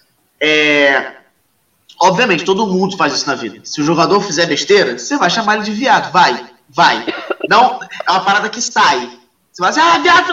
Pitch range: 195-265 Hz